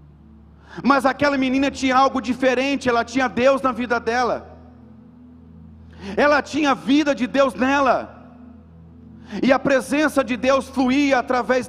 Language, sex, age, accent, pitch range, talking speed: Portuguese, male, 50-69, Brazilian, 200-260 Hz, 135 wpm